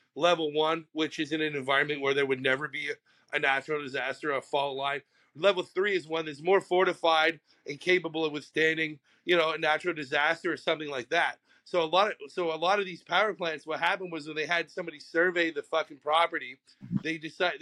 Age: 30-49